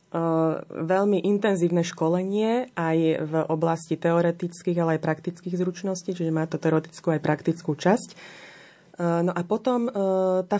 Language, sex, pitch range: Slovak, female, 165-185 Hz